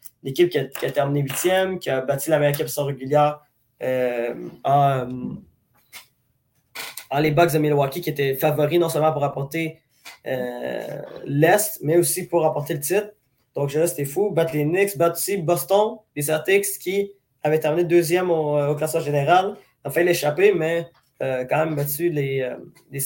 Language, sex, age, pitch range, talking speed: French, male, 20-39, 140-170 Hz, 170 wpm